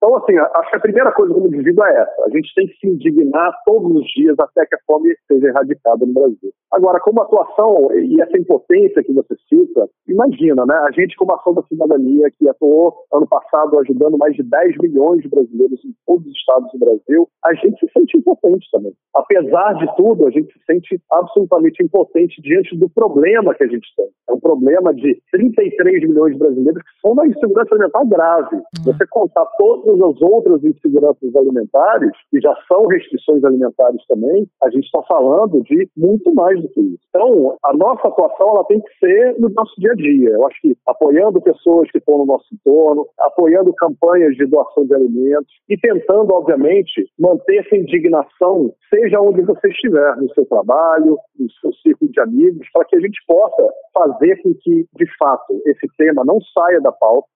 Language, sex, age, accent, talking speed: Portuguese, male, 50-69, Brazilian, 195 wpm